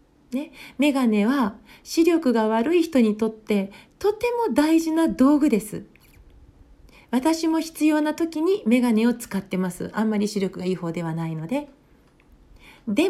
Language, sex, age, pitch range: Japanese, female, 40-59, 195-300 Hz